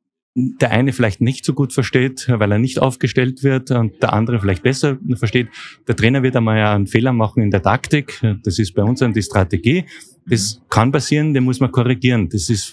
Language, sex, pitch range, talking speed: German, male, 110-135 Hz, 205 wpm